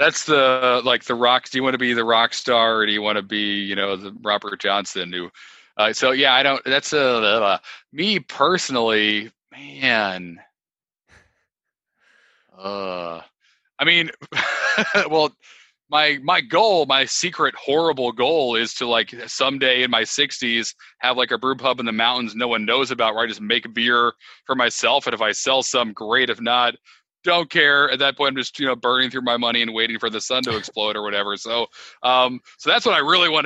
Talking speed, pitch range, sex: 200 wpm, 110-130 Hz, male